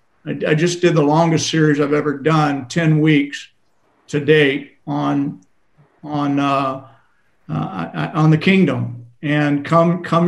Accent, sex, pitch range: American, male, 150-175 Hz